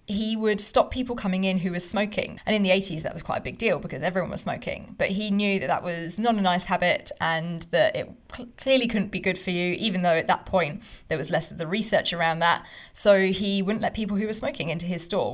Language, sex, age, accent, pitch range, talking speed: English, female, 20-39, British, 175-210 Hz, 260 wpm